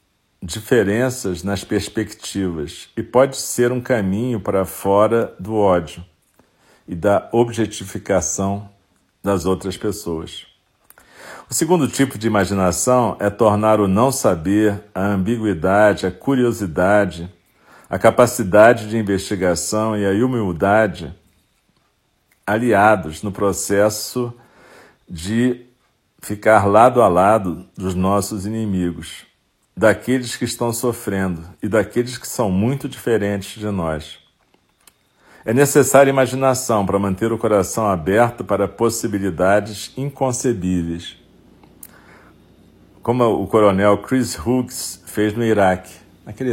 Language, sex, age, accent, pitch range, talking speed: Portuguese, male, 50-69, Brazilian, 90-115 Hz, 105 wpm